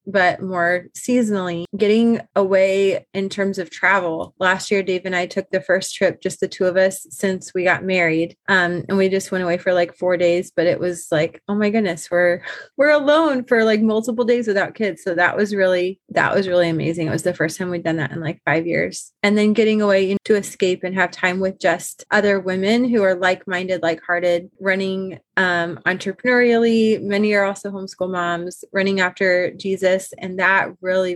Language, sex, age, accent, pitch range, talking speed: English, female, 20-39, American, 180-215 Hz, 200 wpm